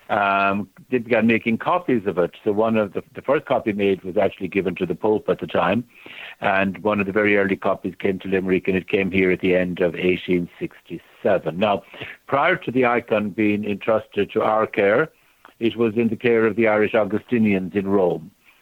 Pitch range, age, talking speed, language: 95-110 Hz, 60-79, 215 wpm, English